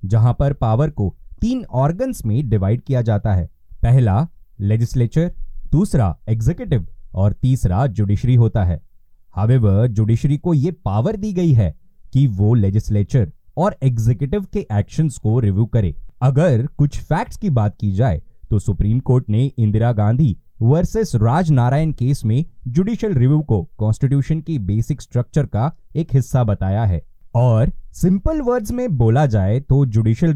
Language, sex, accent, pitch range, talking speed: Hindi, male, native, 110-155 Hz, 150 wpm